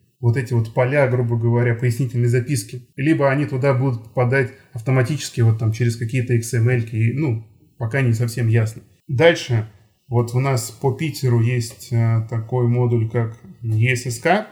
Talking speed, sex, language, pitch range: 145 wpm, male, Russian, 120-140 Hz